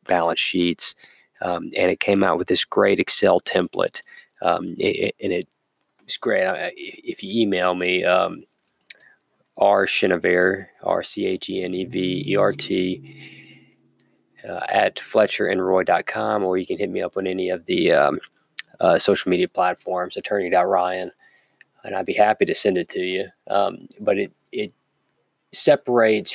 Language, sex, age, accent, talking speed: English, male, 20-39, American, 160 wpm